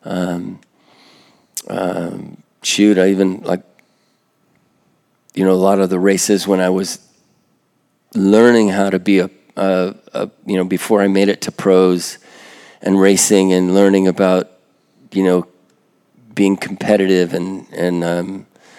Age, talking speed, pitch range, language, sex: 40-59, 135 wpm, 90-100 Hz, English, male